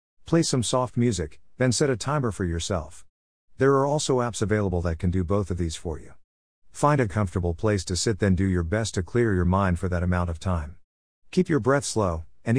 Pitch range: 90-115 Hz